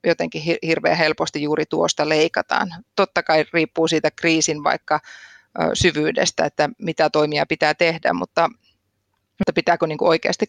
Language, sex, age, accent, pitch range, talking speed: Finnish, female, 30-49, native, 155-170 Hz, 120 wpm